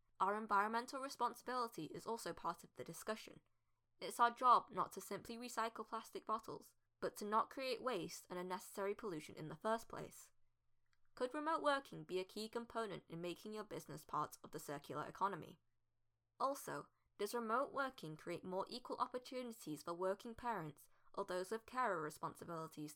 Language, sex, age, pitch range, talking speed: English, female, 10-29, 155-230 Hz, 160 wpm